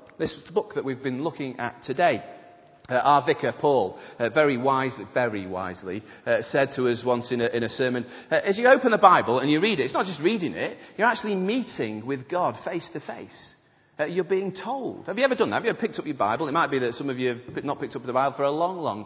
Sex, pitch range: male, 115-160 Hz